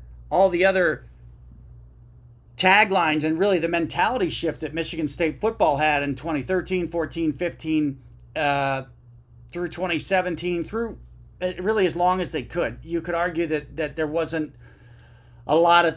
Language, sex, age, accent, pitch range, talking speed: English, male, 40-59, American, 120-170 Hz, 145 wpm